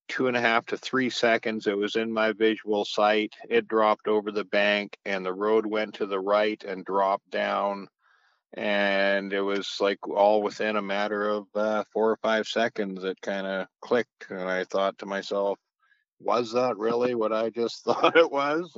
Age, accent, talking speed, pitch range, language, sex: 50-69, American, 190 wpm, 100-115 Hz, English, male